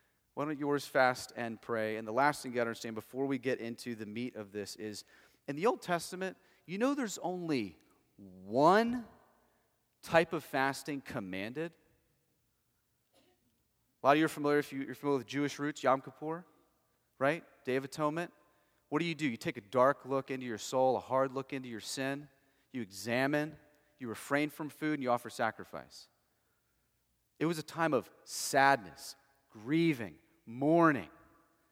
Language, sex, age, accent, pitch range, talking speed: English, male, 30-49, American, 120-155 Hz, 170 wpm